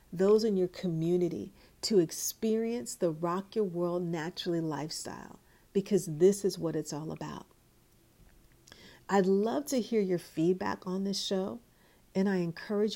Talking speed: 145 wpm